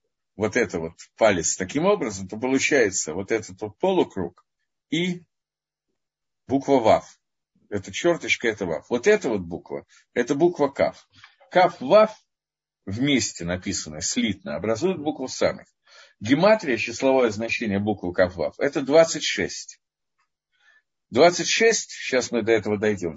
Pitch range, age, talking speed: 110-175 Hz, 50-69, 120 wpm